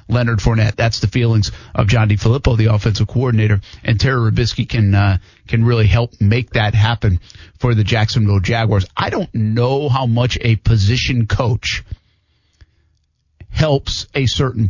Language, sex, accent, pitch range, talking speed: English, male, American, 110-135 Hz, 155 wpm